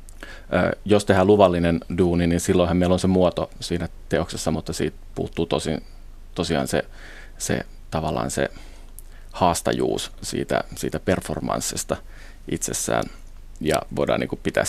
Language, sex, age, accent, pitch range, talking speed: Finnish, male, 30-49, native, 80-95 Hz, 120 wpm